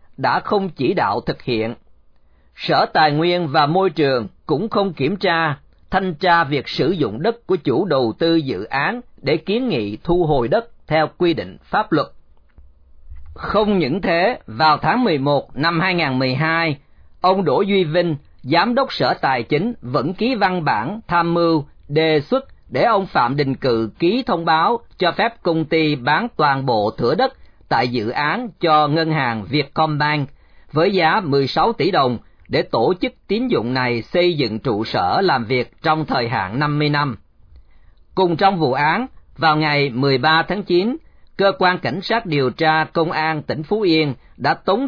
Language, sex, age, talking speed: Vietnamese, male, 40-59, 175 wpm